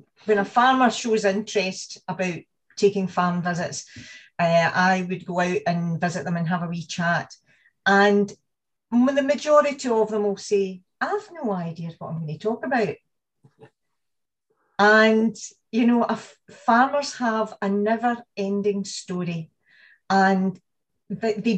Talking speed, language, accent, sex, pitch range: 145 wpm, English, British, female, 185-220 Hz